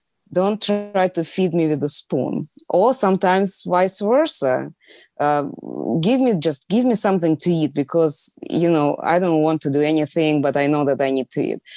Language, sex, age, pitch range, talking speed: English, female, 20-39, 150-185 Hz, 195 wpm